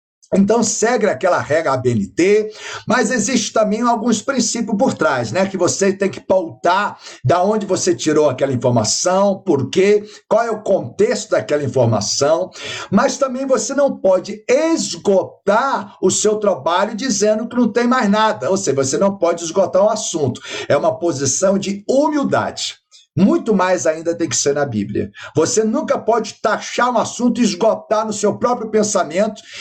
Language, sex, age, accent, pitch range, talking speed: Portuguese, male, 60-79, Brazilian, 180-240 Hz, 165 wpm